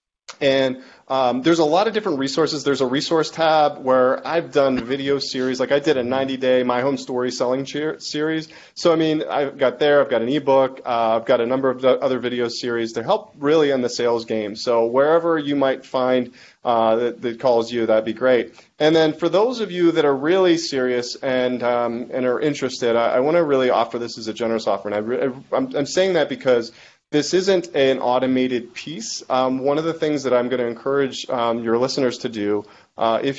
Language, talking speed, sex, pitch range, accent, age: English, 225 wpm, male, 125-155 Hz, American, 30-49